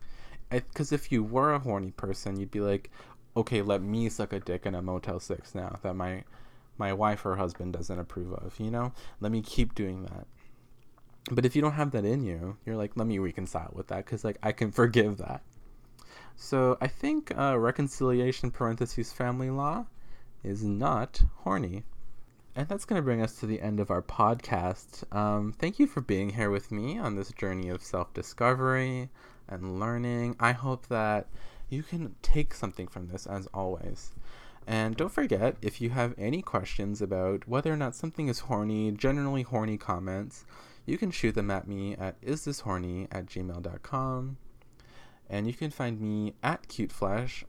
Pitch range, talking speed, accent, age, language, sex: 100-130 Hz, 180 wpm, American, 20-39, English, male